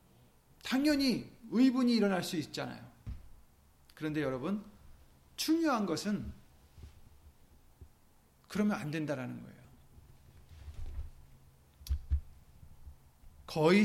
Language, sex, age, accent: Korean, male, 40-59, native